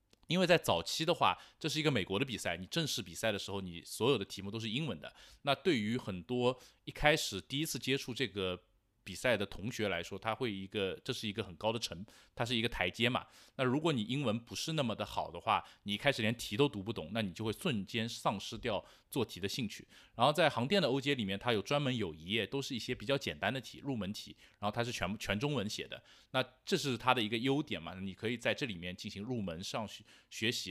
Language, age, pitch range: Chinese, 20-39, 100-130 Hz